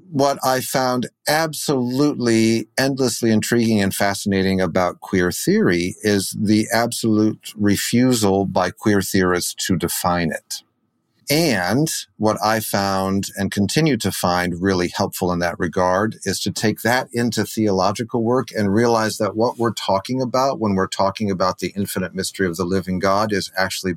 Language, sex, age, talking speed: English, male, 50-69, 155 wpm